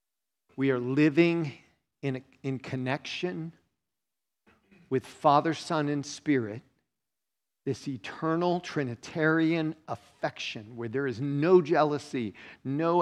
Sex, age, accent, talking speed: male, 50-69, American, 100 wpm